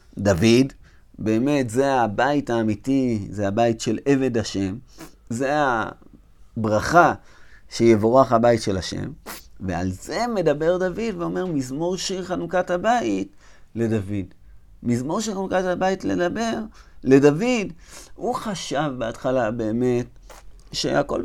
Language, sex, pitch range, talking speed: Hebrew, male, 110-155 Hz, 105 wpm